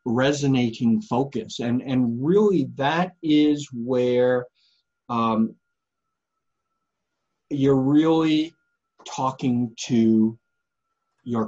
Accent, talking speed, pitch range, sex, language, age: American, 75 wpm, 115-175 Hz, male, English, 40-59